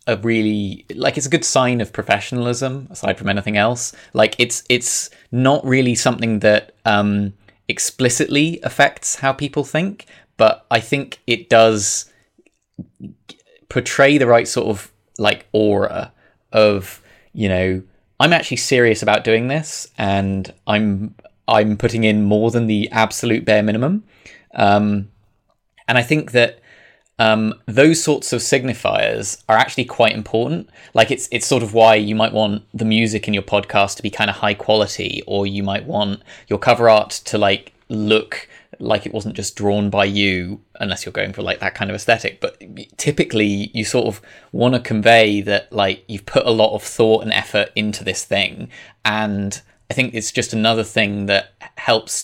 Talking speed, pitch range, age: 170 wpm, 105-120 Hz, 20-39